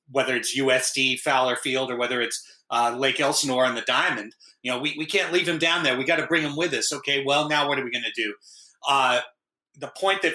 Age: 40-59